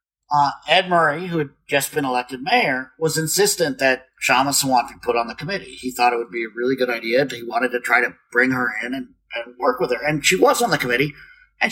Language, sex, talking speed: English, male, 245 wpm